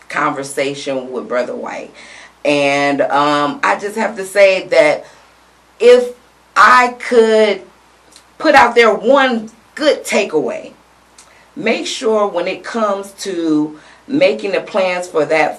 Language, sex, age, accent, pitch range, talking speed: English, female, 40-59, American, 150-220 Hz, 125 wpm